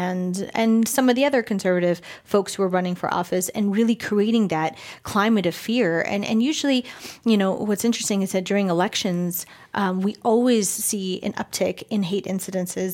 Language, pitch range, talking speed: English, 185-205 Hz, 185 wpm